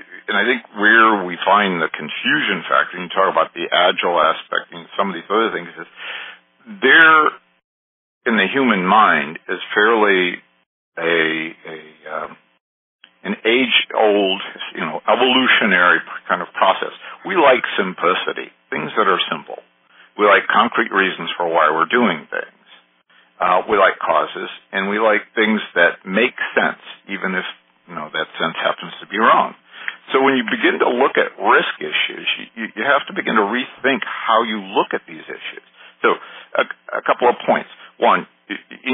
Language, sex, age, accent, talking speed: English, male, 50-69, American, 165 wpm